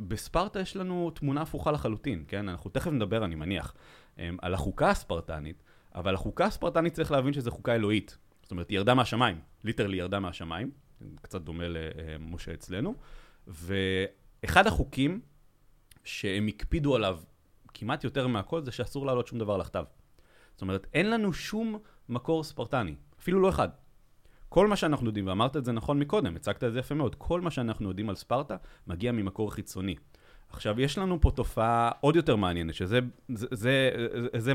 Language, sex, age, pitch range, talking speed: Hebrew, male, 30-49, 95-135 Hz, 160 wpm